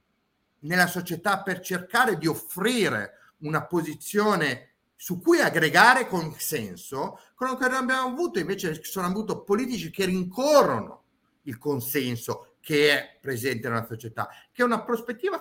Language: Italian